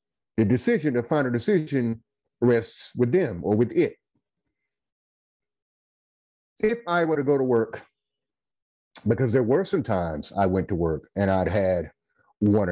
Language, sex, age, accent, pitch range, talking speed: English, male, 30-49, American, 95-120 Hz, 150 wpm